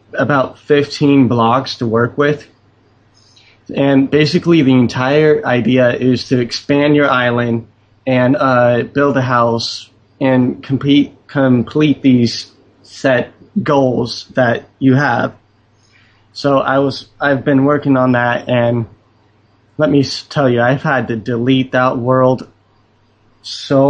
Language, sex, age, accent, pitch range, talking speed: English, male, 20-39, American, 110-140 Hz, 120 wpm